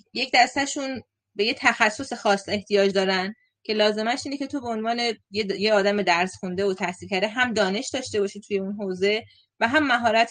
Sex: female